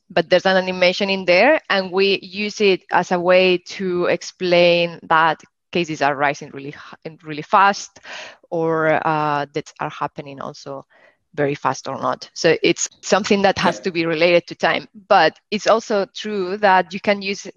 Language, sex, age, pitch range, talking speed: English, female, 20-39, 165-195 Hz, 170 wpm